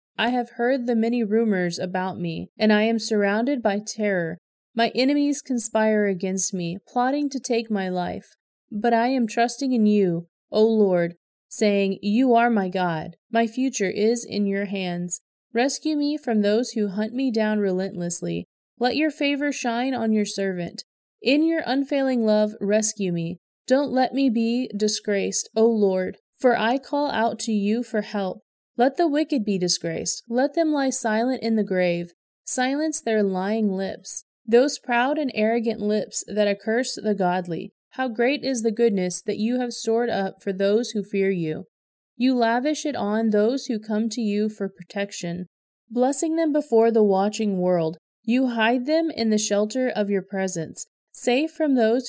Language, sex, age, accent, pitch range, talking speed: English, female, 30-49, American, 195-250 Hz, 170 wpm